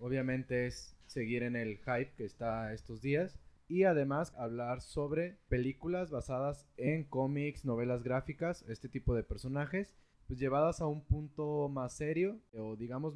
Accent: Mexican